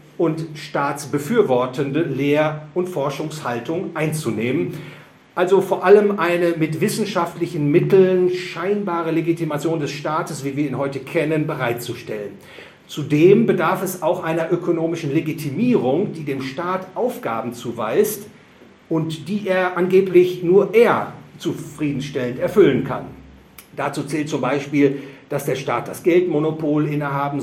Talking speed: 120 wpm